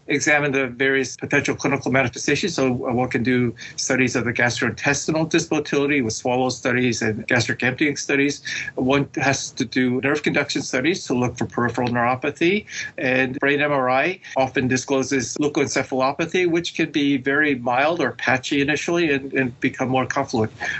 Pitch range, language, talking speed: 130-150 Hz, English, 155 wpm